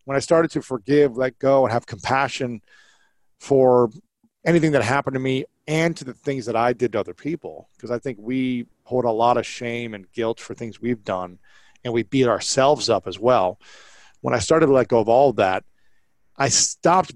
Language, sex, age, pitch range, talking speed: English, male, 40-59, 120-150 Hz, 205 wpm